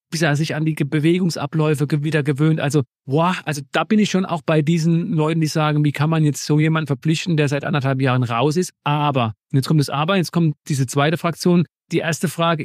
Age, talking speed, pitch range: 40-59, 230 wpm, 145-170 Hz